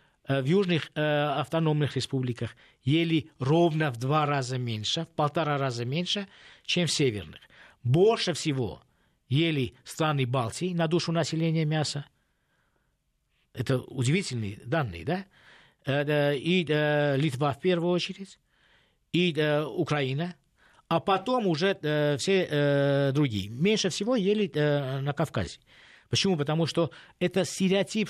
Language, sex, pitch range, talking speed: Russian, male, 140-180 Hz, 125 wpm